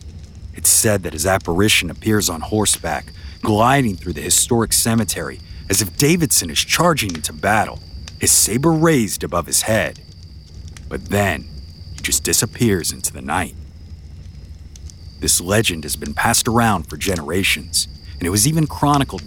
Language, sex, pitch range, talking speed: English, male, 80-120 Hz, 145 wpm